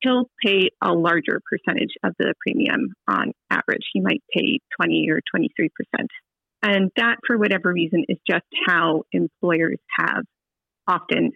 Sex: female